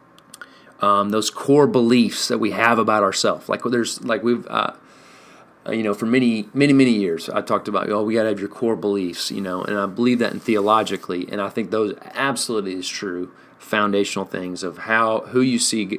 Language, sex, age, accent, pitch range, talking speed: English, male, 30-49, American, 95-115 Hz, 205 wpm